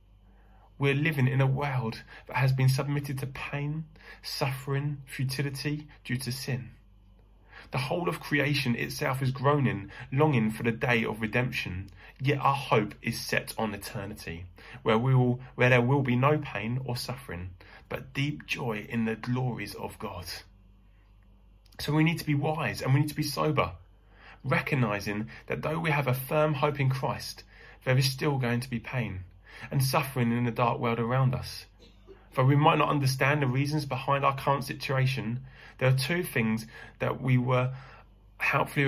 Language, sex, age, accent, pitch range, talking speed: English, male, 20-39, British, 105-140 Hz, 170 wpm